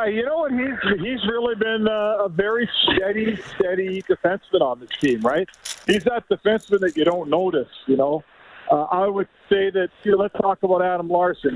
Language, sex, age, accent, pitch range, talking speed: English, male, 50-69, American, 175-220 Hz, 190 wpm